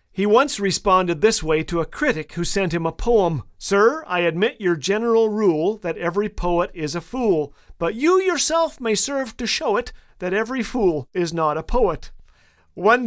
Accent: American